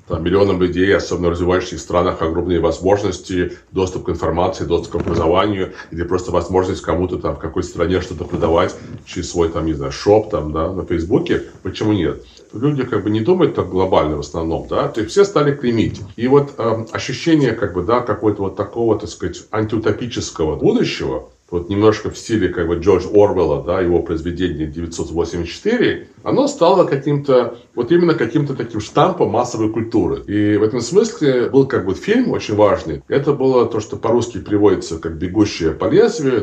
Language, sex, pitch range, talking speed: Russian, male, 90-130 Hz, 175 wpm